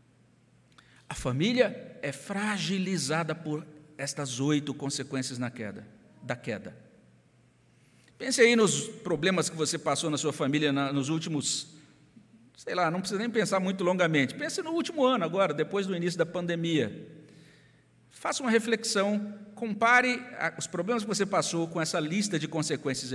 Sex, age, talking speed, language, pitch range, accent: male, 50-69, 150 wpm, Portuguese, 155-210 Hz, Brazilian